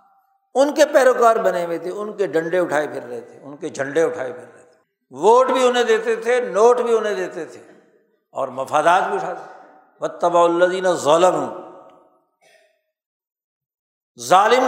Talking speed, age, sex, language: 145 wpm, 60-79, male, Urdu